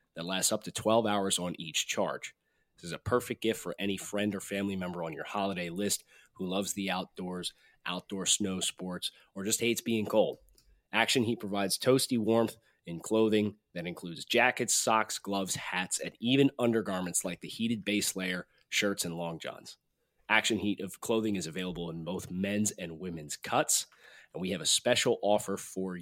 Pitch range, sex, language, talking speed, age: 90-115 Hz, male, English, 185 wpm, 30-49